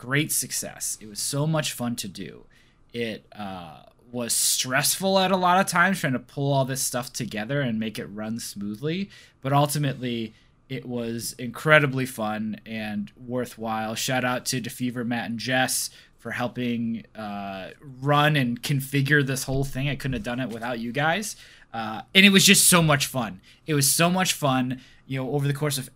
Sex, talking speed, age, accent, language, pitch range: male, 185 wpm, 20-39, American, English, 120-150 Hz